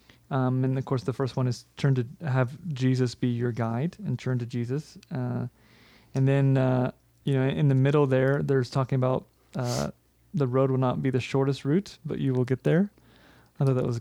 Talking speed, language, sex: 215 wpm, English, male